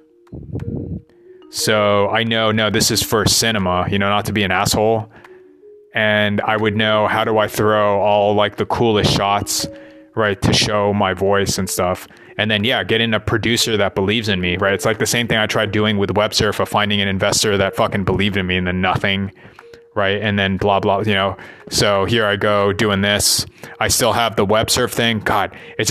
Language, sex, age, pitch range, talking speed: English, male, 30-49, 100-115 Hz, 210 wpm